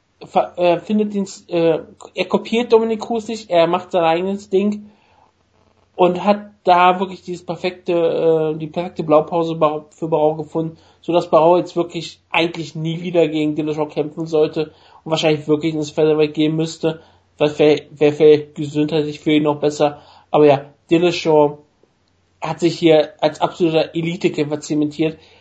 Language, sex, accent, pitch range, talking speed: German, male, German, 155-180 Hz, 145 wpm